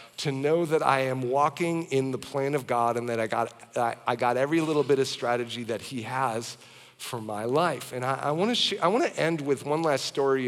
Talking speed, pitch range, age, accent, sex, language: 235 wpm, 120-140 Hz, 40-59, American, male, English